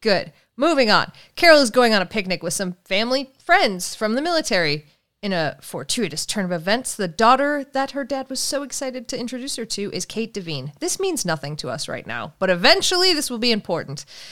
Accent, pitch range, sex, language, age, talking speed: American, 180-255 Hz, female, English, 30-49, 210 wpm